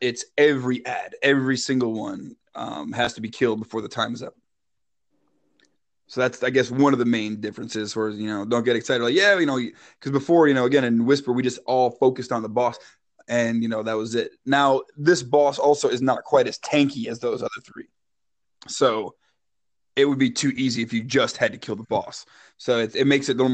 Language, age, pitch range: English, 20-39, 110-130 Hz